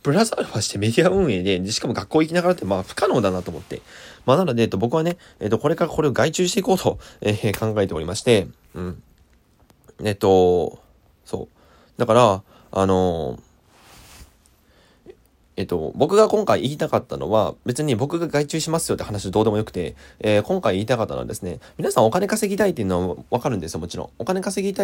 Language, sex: Japanese, male